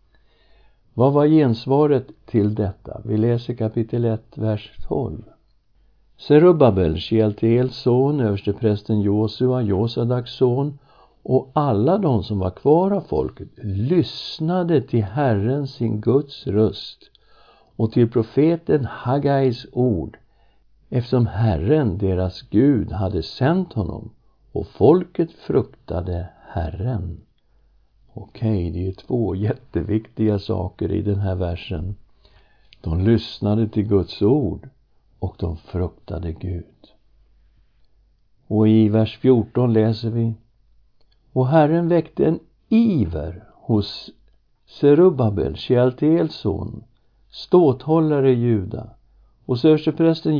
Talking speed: 100 wpm